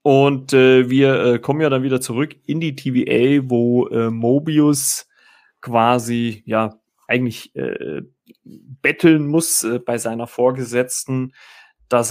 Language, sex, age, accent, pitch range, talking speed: German, male, 30-49, German, 115-135 Hz, 130 wpm